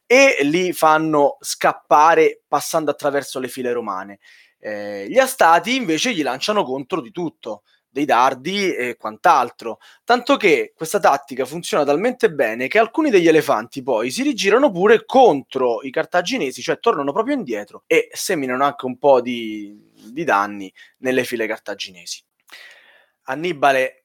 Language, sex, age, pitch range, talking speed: Italian, male, 20-39, 130-200 Hz, 140 wpm